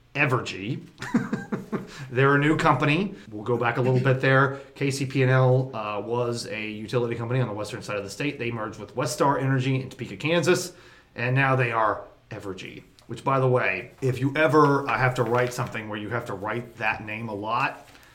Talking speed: 195 wpm